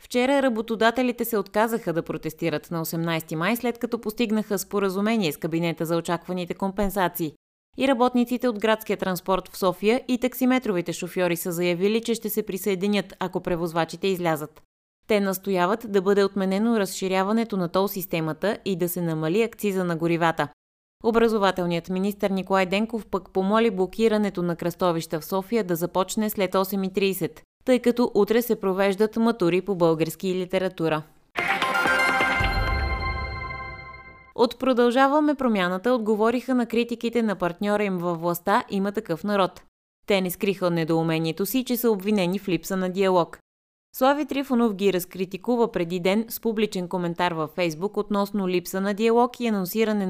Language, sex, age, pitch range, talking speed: Bulgarian, female, 20-39, 175-225 Hz, 145 wpm